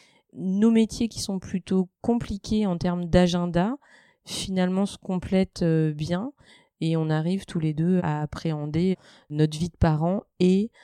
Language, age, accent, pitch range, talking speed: French, 30-49, French, 160-185 Hz, 145 wpm